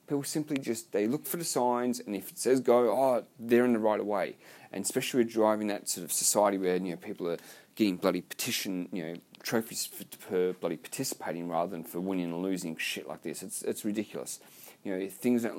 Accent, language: Australian, English